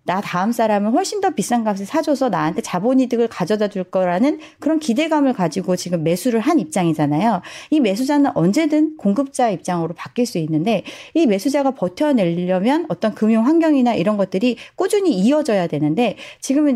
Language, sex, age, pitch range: Korean, female, 40-59, 180-275 Hz